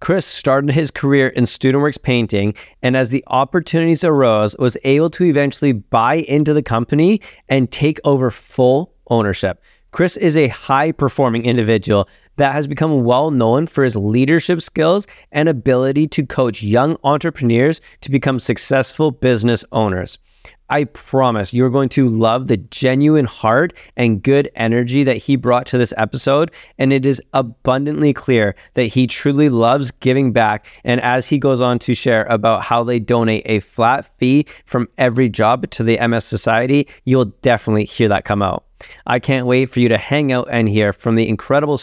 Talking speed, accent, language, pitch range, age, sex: 175 wpm, American, English, 115-140 Hz, 20-39, male